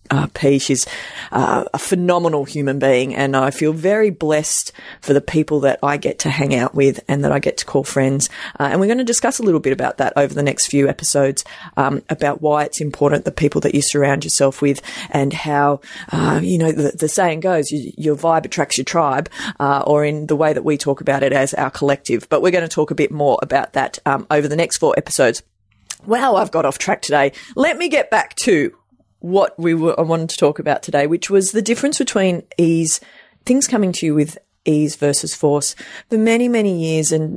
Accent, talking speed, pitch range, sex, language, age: Australian, 225 wpm, 145-180 Hz, female, English, 30-49